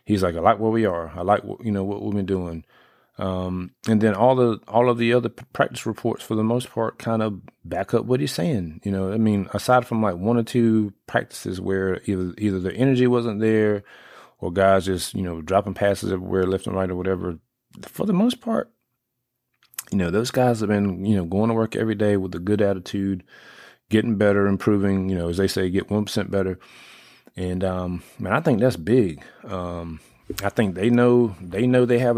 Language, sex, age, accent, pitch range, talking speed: English, male, 30-49, American, 95-115 Hz, 220 wpm